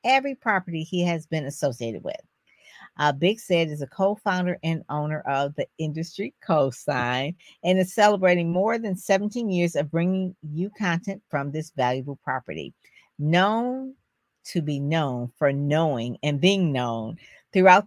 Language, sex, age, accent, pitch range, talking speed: English, female, 50-69, American, 135-185 Hz, 150 wpm